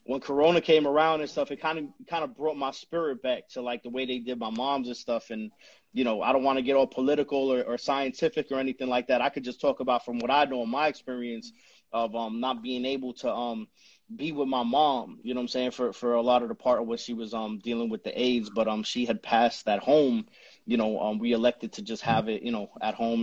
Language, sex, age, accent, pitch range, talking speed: English, male, 30-49, American, 120-160 Hz, 275 wpm